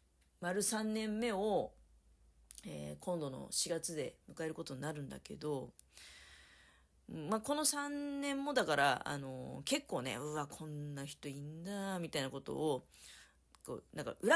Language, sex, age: Japanese, female, 40-59